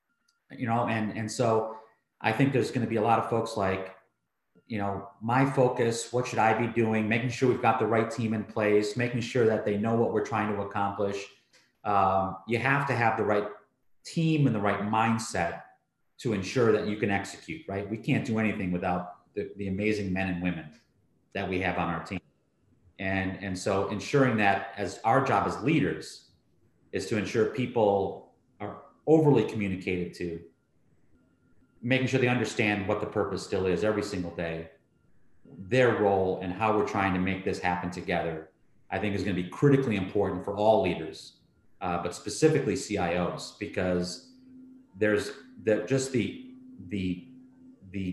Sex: male